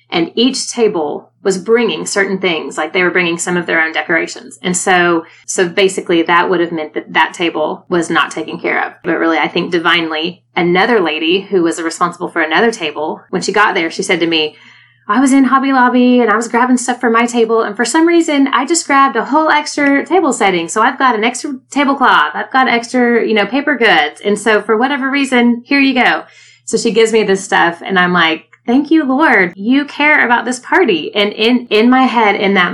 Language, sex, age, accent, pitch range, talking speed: English, female, 30-49, American, 180-250 Hz, 225 wpm